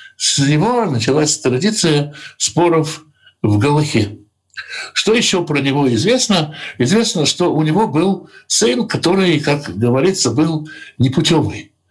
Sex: male